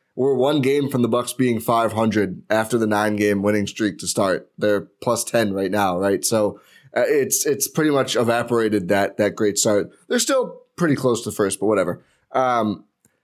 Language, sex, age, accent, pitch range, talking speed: English, male, 20-39, American, 110-140 Hz, 185 wpm